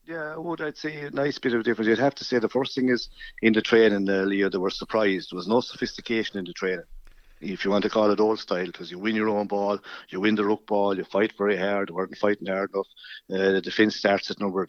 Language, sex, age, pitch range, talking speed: English, male, 60-79, 100-115 Hz, 280 wpm